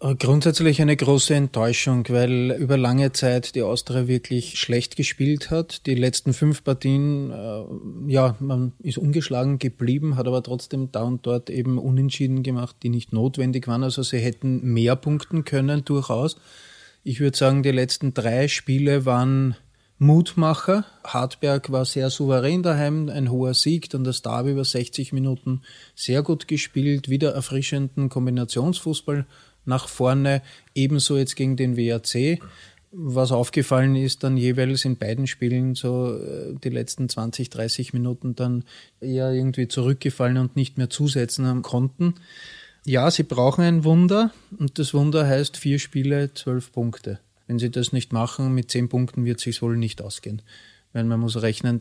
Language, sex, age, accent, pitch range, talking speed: German, male, 30-49, Austrian, 120-140 Hz, 155 wpm